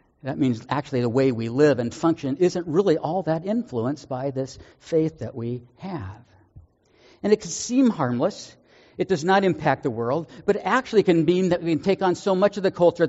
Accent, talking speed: American, 210 wpm